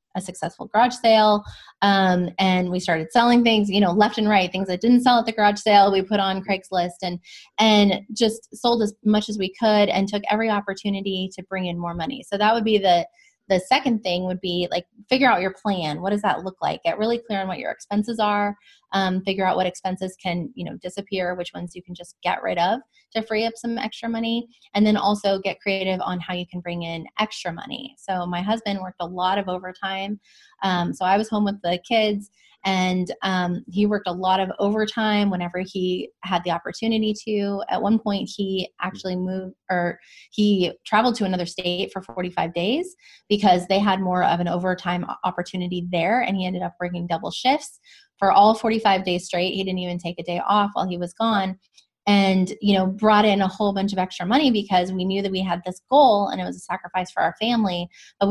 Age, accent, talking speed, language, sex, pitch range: 20-39, American, 220 wpm, English, female, 180-215 Hz